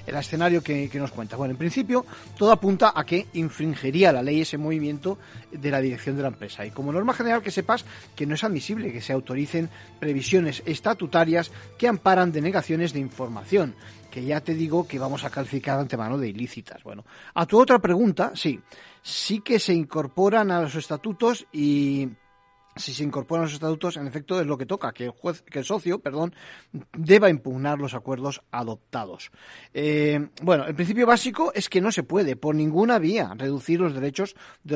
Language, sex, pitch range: Spanish, male, 135-180 Hz